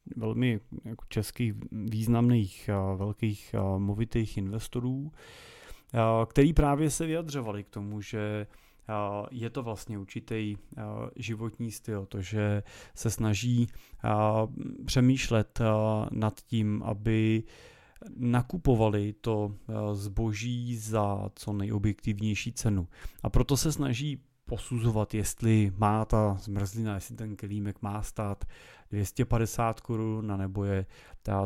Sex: male